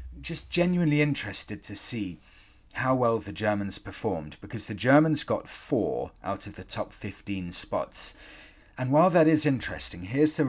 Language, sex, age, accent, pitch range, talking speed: English, male, 30-49, British, 95-140 Hz, 160 wpm